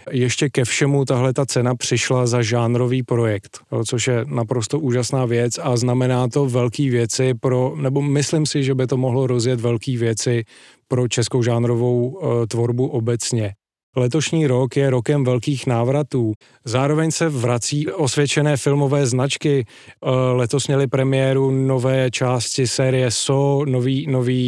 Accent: native